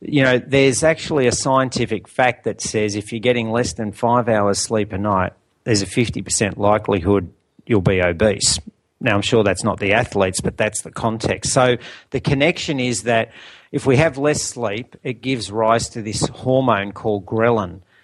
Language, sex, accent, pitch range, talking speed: English, male, Australian, 105-125 Hz, 185 wpm